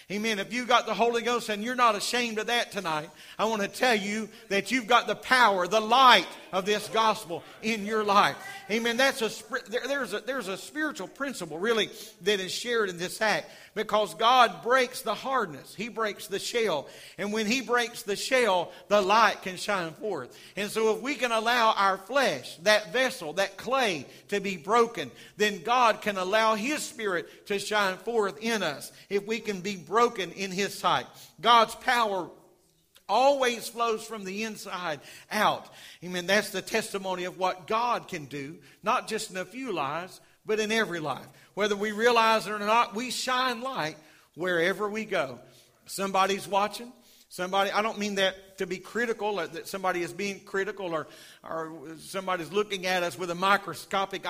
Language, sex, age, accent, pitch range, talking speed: English, male, 50-69, American, 190-230 Hz, 185 wpm